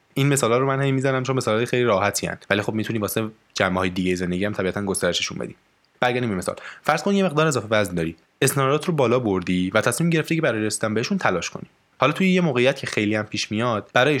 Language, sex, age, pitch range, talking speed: Persian, male, 20-39, 105-145 Hz, 225 wpm